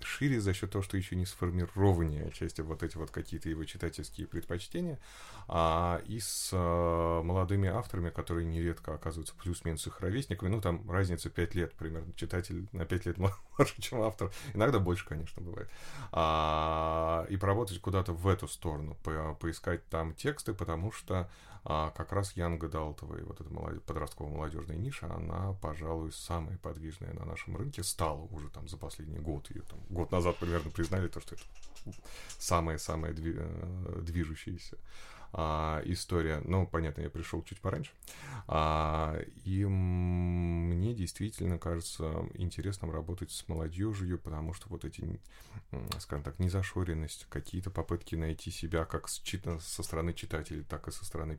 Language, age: Russian, 30-49